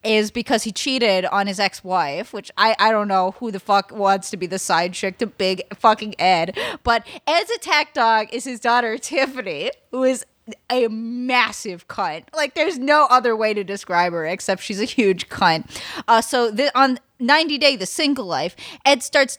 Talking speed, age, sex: 190 wpm, 30-49, female